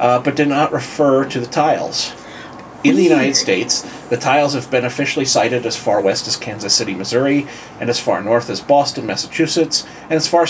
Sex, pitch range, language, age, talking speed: male, 115-145 Hz, English, 30-49, 200 wpm